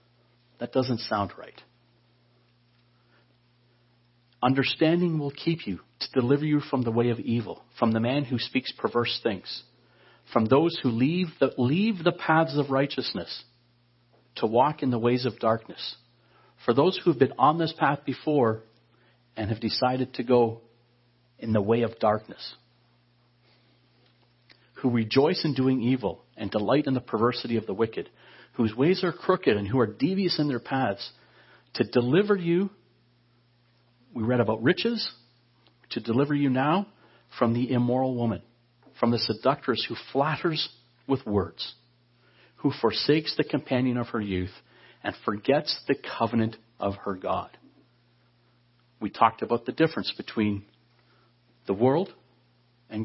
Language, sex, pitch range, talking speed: English, male, 120-135 Hz, 145 wpm